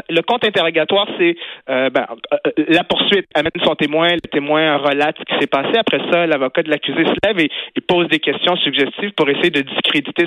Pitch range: 140-170 Hz